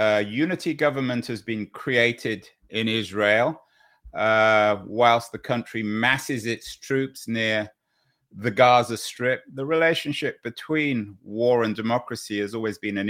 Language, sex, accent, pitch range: English, male, British, 105-130 Hz